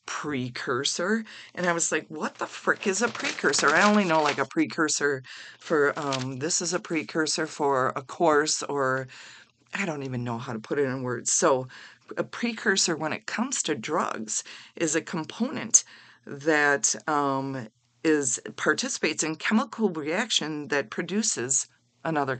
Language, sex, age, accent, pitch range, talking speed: English, female, 40-59, American, 130-175 Hz, 155 wpm